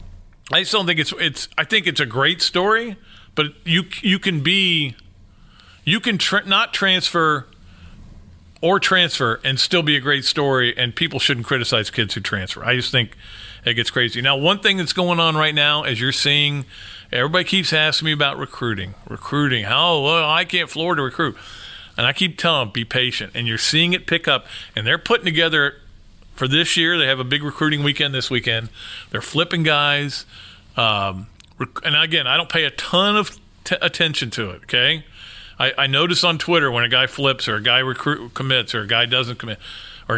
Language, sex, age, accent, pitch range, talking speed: English, male, 40-59, American, 115-165 Hz, 195 wpm